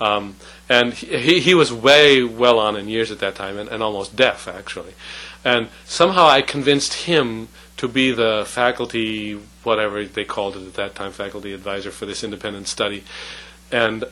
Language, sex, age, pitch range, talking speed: English, male, 40-59, 105-135 Hz, 175 wpm